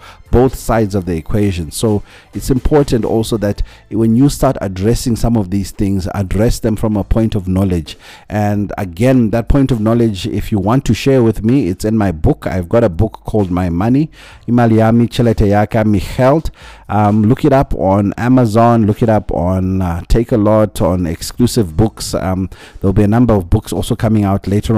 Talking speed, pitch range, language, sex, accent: 190 wpm, 95-115 Hz, English, male, South African